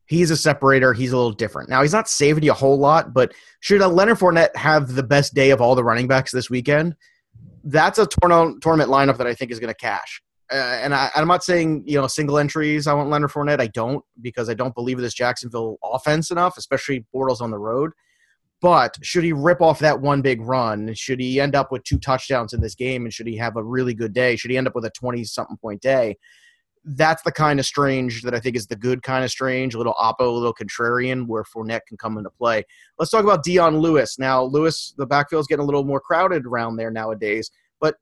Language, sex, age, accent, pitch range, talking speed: English, male, 30-49, American, 120-155 Hz, 240 wpm